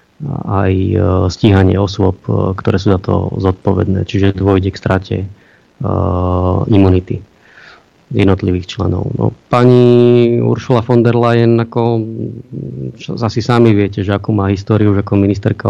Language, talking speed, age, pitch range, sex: Slovak, 130 wpm, 30-49, 95-115 Hz, male